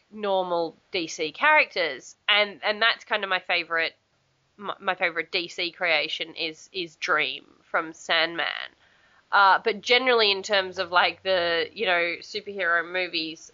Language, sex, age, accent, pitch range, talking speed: English, female, 20-39, Australian, 165-215 Hz, 135 wpm